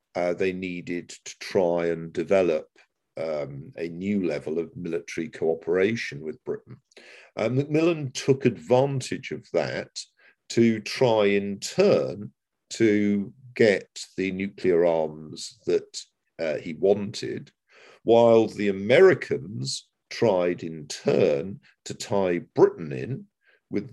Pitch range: 85-115 Hz